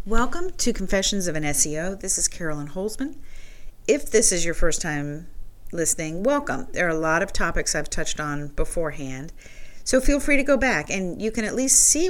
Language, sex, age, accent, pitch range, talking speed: English, female, 40-59, American, 155-220 Hz, 200 wpm